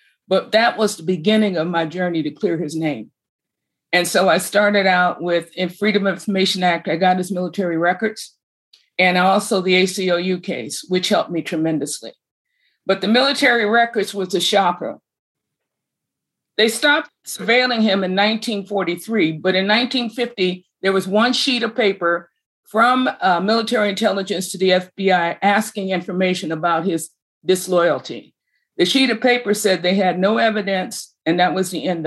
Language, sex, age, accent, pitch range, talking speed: English, female, 50-69, American, 175-215 Hz, 160 wpm